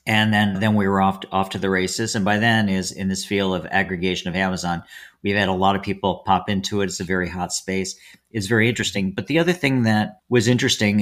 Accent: American